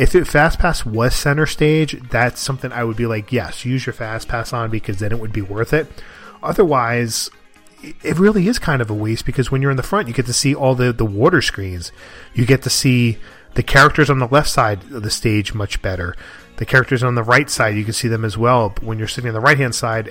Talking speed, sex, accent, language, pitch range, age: 250 wpm, male, American, English, 105-130 Hz, 30-49